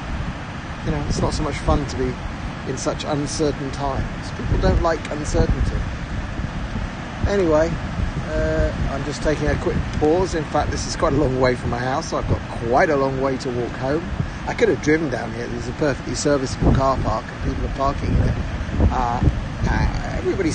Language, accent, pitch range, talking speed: English, British, 105-145 Hz, 195 wpm